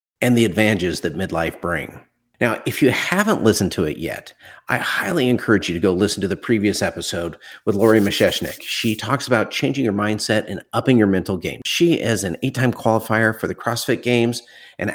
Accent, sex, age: American, male, 50-69